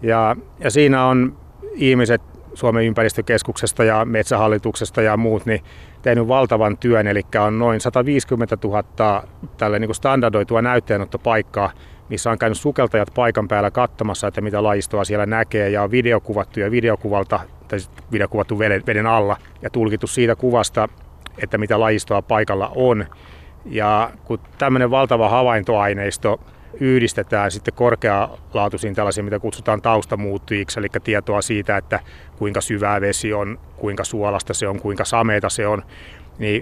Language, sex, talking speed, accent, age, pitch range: Finnish, male, 135 wpm, native, 30-49, 100-115 Hz